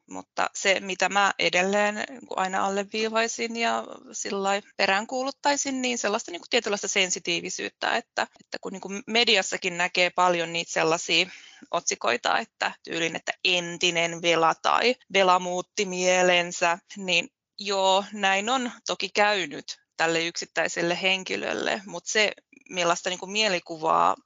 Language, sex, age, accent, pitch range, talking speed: Finnish, female, 20-39, native, 180-220 Hz, 115 wpm